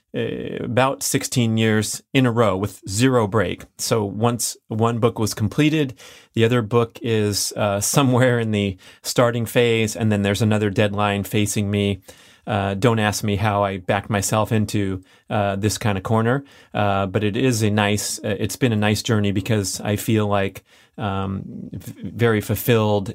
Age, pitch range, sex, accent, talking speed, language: 30-49, 100-110 Hz, male, American, 165 wpm, English